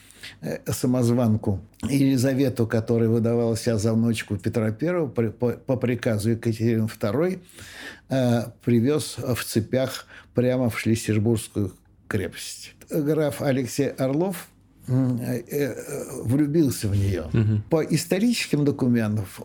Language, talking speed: Russian, 90 wpm